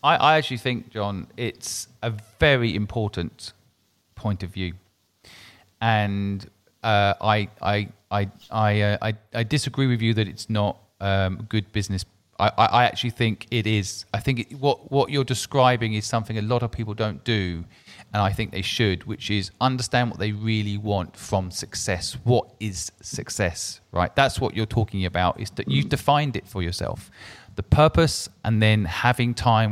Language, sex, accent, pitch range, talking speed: English, male, British, 100-120 Hz, 175 wpm